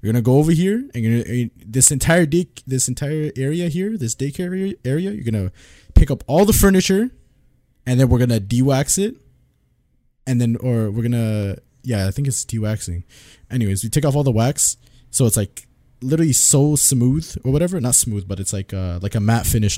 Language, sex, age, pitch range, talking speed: English, male, 20-39, 100-130 Hz, 205 wpm